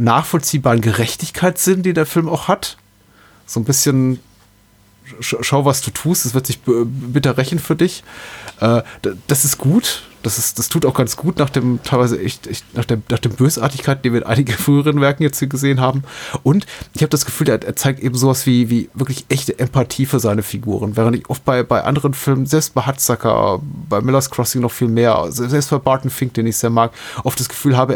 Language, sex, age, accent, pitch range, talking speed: German, male, 30-49, German, 115-135 Hz, 210 wpm